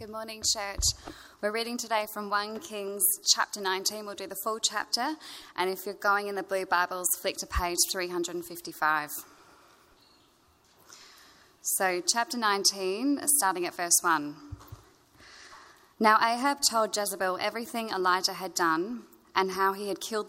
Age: 10-29